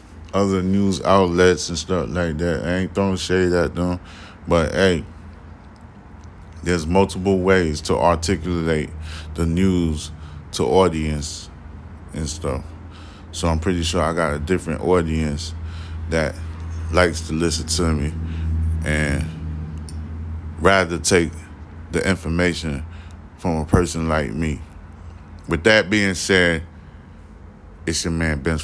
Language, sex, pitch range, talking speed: English, male, 80-95 Hz, 125 wpm